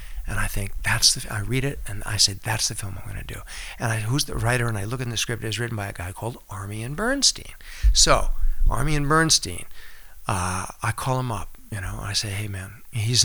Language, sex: English, male